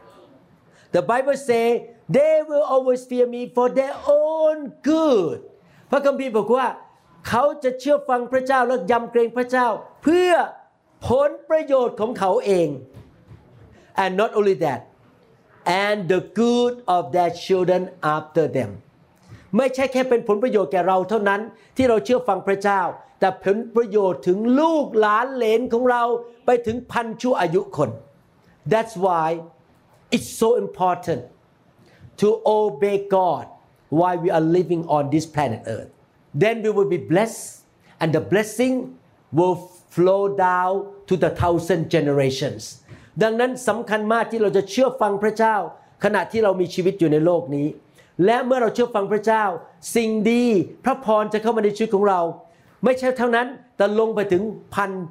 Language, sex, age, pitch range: Thai, male, 60-79, 175-245 Hz